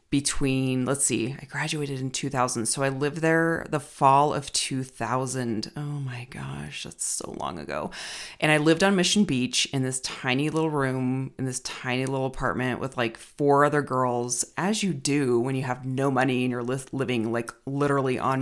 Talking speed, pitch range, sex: 185 wpm, 125-150 Hz, female